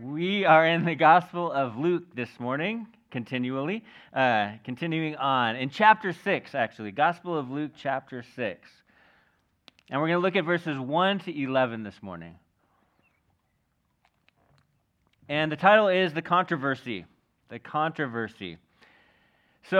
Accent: American